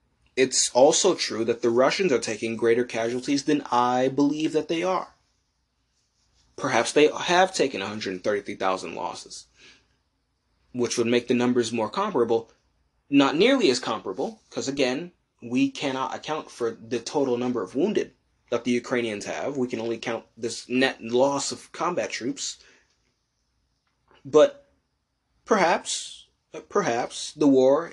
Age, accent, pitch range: 20-39, American, 120-155 Hz